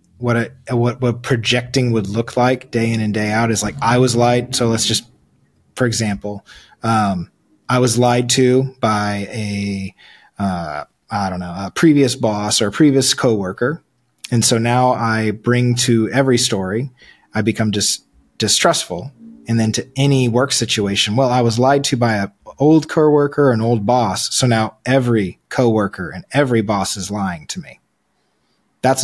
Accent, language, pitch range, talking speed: American, English, 110-130 Hz, 175 wpm